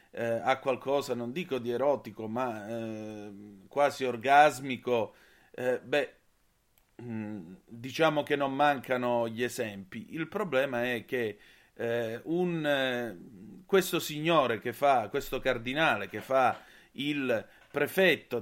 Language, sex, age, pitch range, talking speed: Italian, male, 30-49, 115-145 Hz, 115 wpm